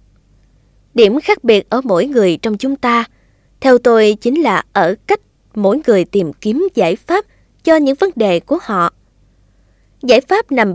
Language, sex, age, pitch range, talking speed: Vietnamese, female, 20-39, 195-300 Hz, 165 wpm